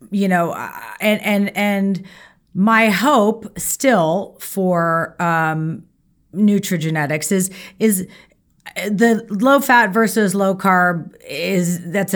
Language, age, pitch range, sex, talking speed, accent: English, 30-49, 175-215 Hz, female, 105 wpm, American